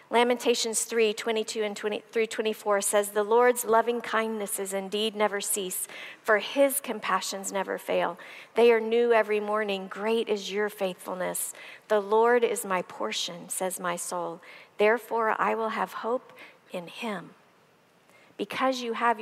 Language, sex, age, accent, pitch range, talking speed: English, female, 50-69, American, 205-240 Hz, 140 wpm